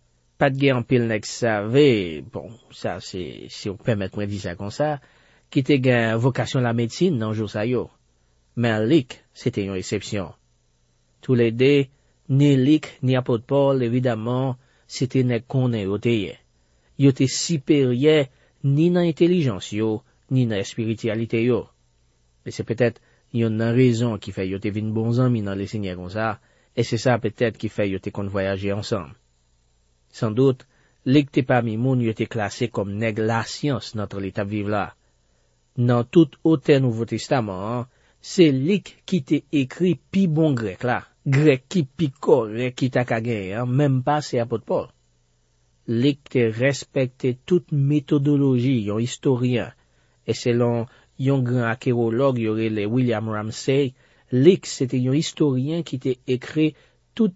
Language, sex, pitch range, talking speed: French, male, 105-140 Hz, 150 wpm